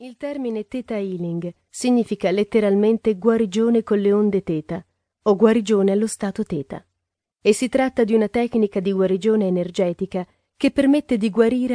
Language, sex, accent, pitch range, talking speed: Italian, female, native, 185-230 Hz, 150 wpm